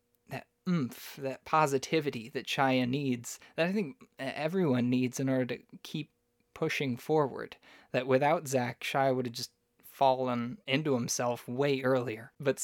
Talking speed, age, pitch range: 140 wpm, 20-39, 125-155 Hz